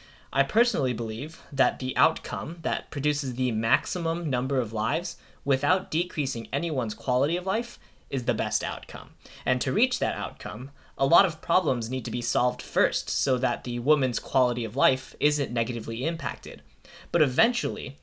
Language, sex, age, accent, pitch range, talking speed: English, male, 10-29, American, 120-165 Hz, 165 wpm